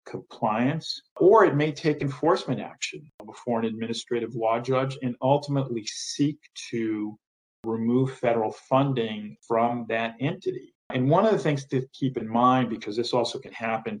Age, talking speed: 40-59, 155 wpm